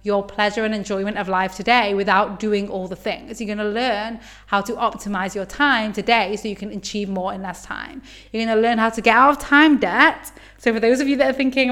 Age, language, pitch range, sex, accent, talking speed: 20-39, English, 200-245 Hz, female, British, 240 wpm